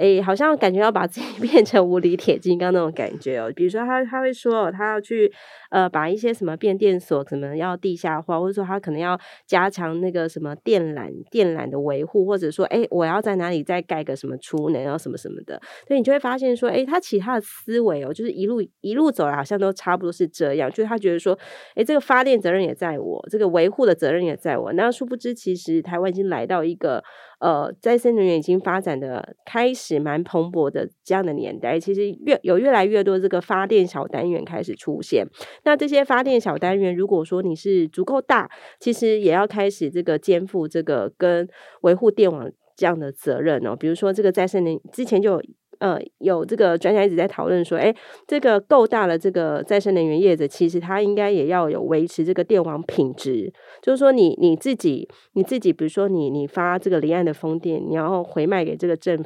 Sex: female